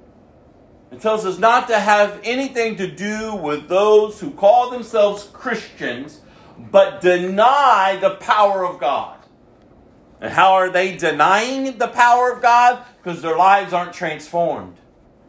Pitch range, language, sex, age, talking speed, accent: 180-235 Hz, English, male, 50-69, 135 wpm, American